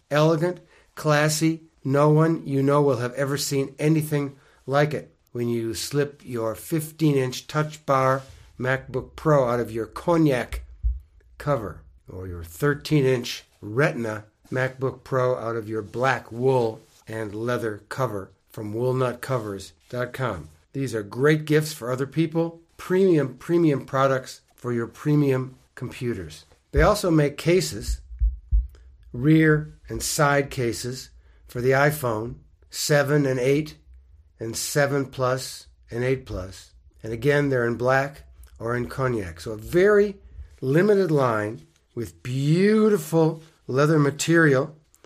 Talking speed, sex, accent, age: 125 wpm, male, American, 60-79